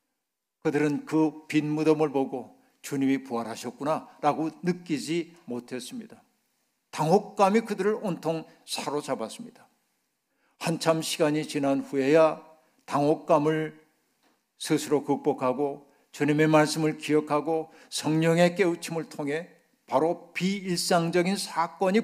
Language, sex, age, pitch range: Korean, male, 50-69, 155-195 Hz